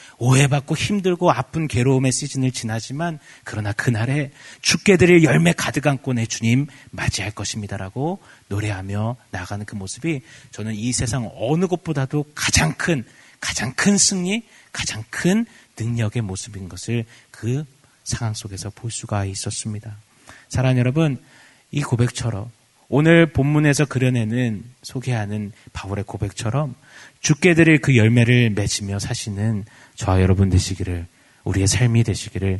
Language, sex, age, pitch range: Korean, male, 30-49, 110-150 Hz